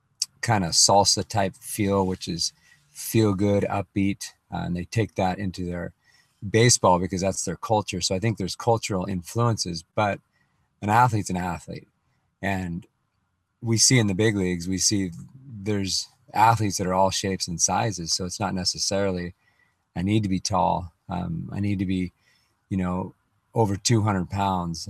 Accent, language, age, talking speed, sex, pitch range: American, English, 40-59, 165 wpm, male, 90-105 Hz